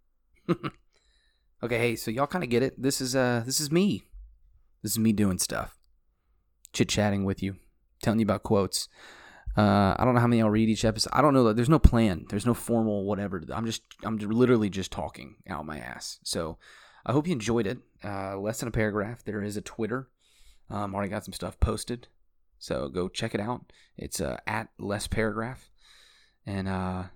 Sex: male